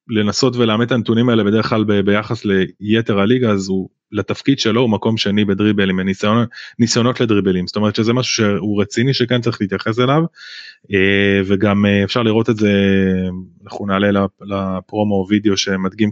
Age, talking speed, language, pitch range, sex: 20-39, 145 wpm, Hebrew, 100-125 Hz, male